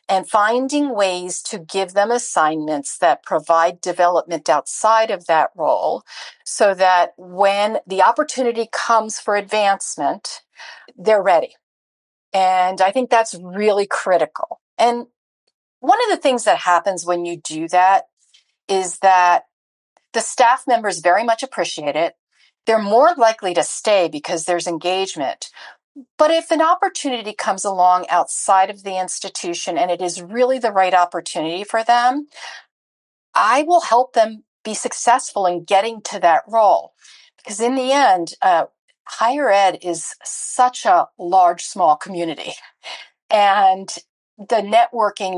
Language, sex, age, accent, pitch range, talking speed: English, female, 40-59, American, 175-230 Hz, 140 wpm